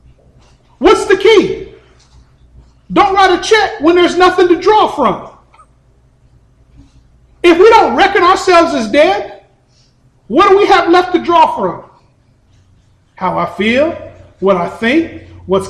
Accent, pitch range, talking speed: American, 245-335 Hz, 135 wpm